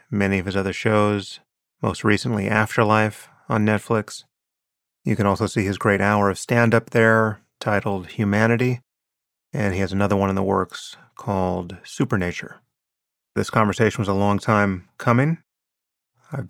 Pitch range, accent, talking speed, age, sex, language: 95-115 Hz, American, 145 wpm, 30-49, male, English